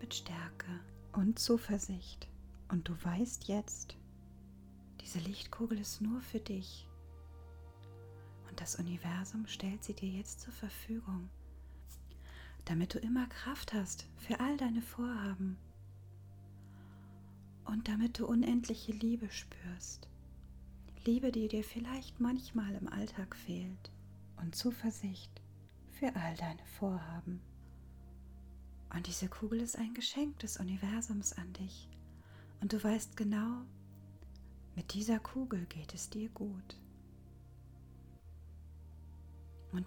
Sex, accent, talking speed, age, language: female, German, 110 wpm, 40-59, German